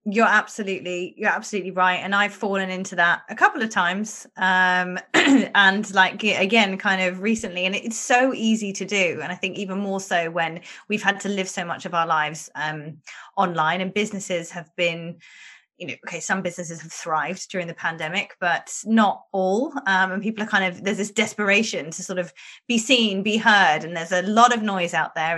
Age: 20-39